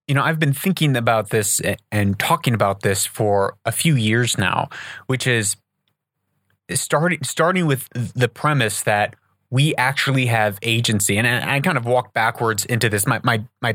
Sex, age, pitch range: male, 30-49, 110-135 Hz